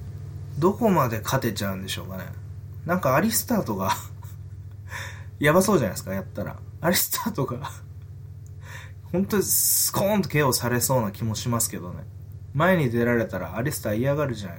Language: Japanese